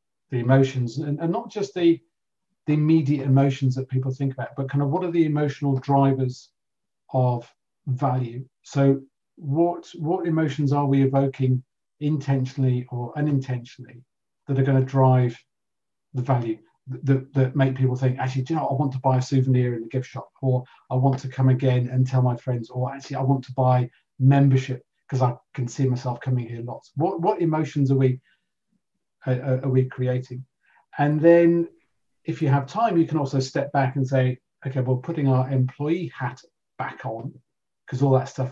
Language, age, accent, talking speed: English, 40-59, British, 185 wpm